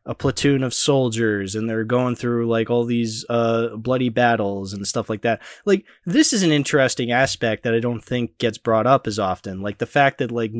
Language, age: English, 20-39